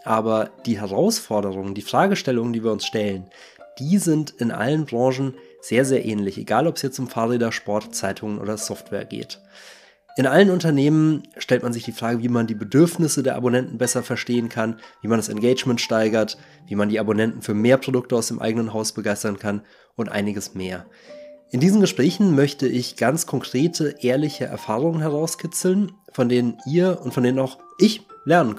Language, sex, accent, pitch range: German, male, German, 115-150 Hz